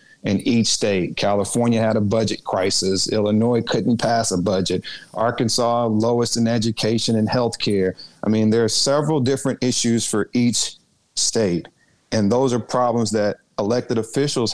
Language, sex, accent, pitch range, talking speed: English, male, American, 110-125 Hz, 155 wpm